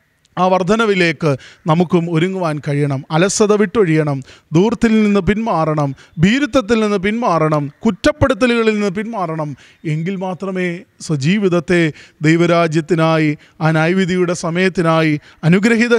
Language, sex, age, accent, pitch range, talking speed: Malayalam, male, 20-39, native, 160-205 Hz, 90 wpm